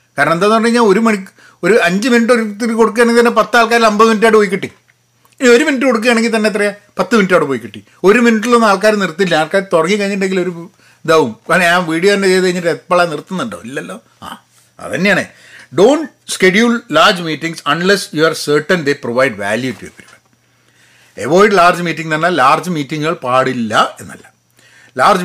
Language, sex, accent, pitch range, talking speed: Malayalam, male, native, 165-235 Hz, 175 wpm